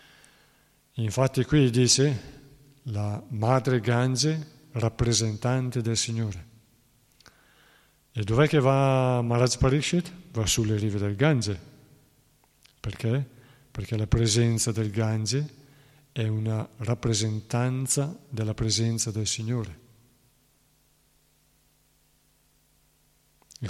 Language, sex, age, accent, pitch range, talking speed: Italian, male, 50-69, native, 110-135 Hz, 85 wpm